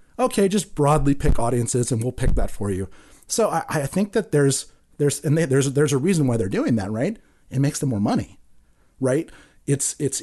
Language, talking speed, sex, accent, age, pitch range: English, 215 wpm, male, American, 30-49, 125-155 Hz